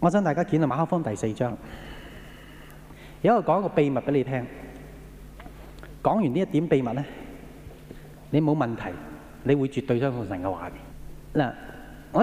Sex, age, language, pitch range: male, 30-49, Japanese, 125-165 Hz